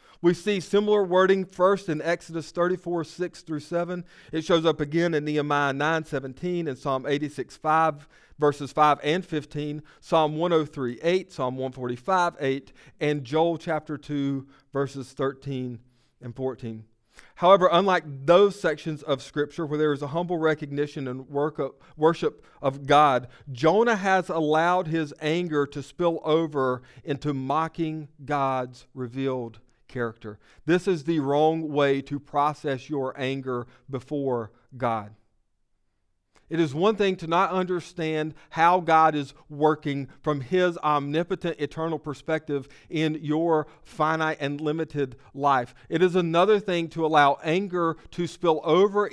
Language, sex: English, male